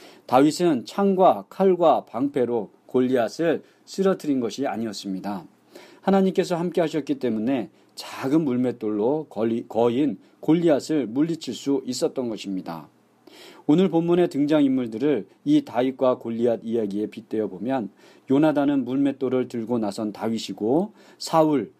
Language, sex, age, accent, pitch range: Korean, male, 40-59, native, 115-155 Hz